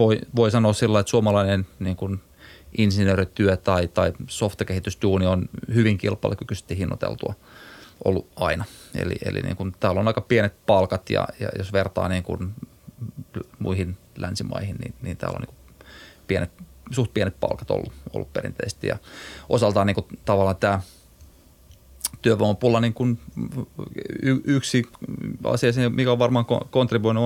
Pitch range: 95-115 Hz